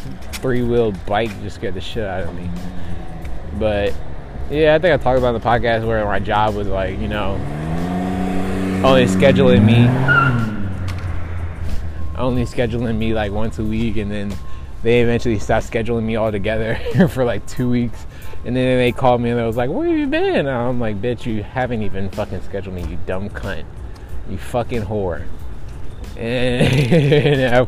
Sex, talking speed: male, 170 wpm